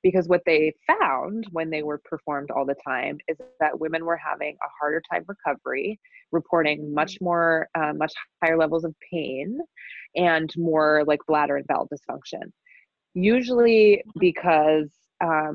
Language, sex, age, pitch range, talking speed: English, female, 20-39, 155-180 Hz, 145 wpm